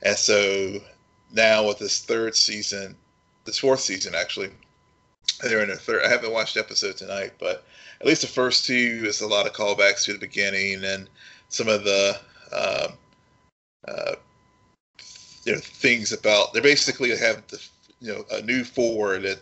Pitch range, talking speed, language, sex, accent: 95-125 Hz, 170 wpm, English, male, American